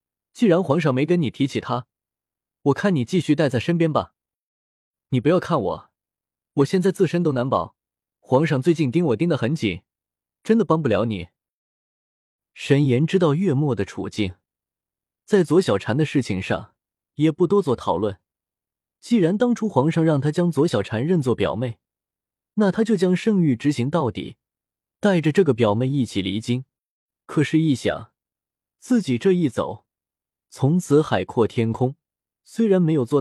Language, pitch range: Chinese, 120-180 Hz